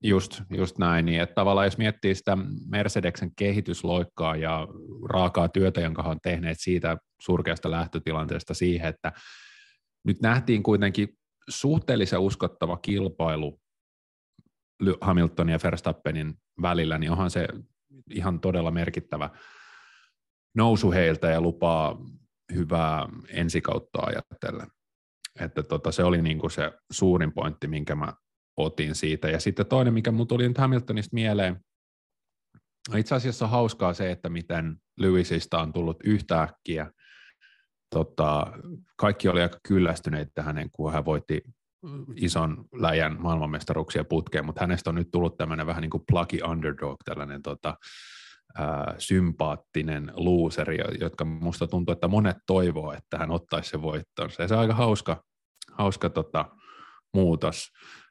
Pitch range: 80-100 Hz